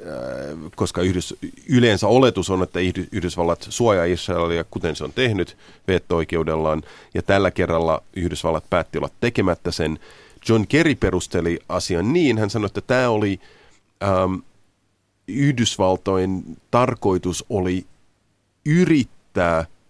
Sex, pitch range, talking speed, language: male, 90-115 Hz, 105 wpm, Finnish